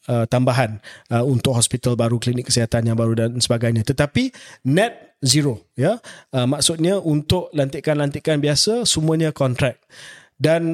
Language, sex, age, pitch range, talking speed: Malay, male, 30-49, 130-160 Hz, 135 wpm